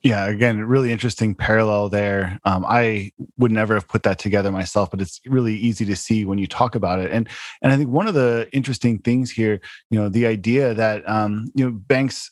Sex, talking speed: male, 220 wpm